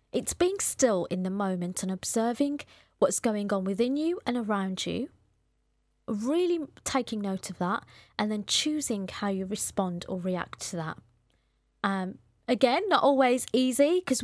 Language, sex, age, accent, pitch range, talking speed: English, female, 30-49, British, 195-275 Hz, 155 wpm